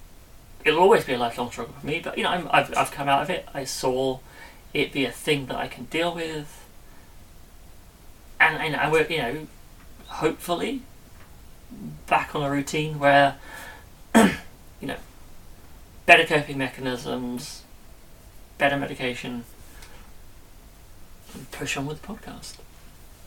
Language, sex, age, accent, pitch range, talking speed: English, male, 30-49, British, 120-155 Hz, 140 wpm